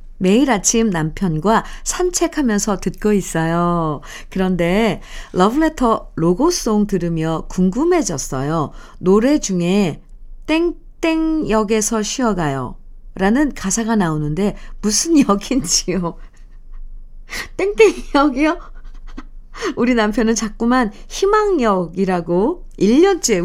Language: Korean